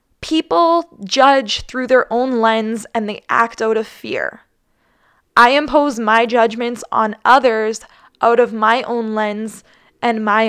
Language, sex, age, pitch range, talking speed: English, female, 10-29, 215-255 Hz, 145 wpm